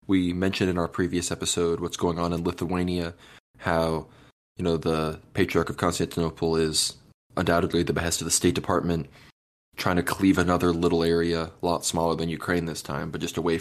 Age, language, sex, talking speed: 20-39, English, male, 185 wpm